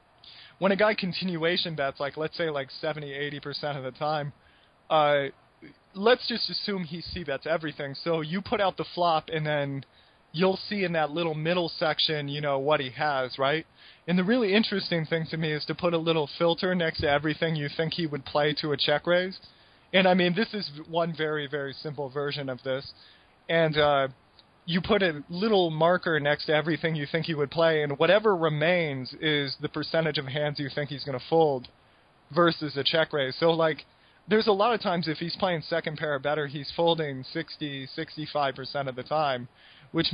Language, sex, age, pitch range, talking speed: English, male, 20-39, 145-170 Hz, 200 wpm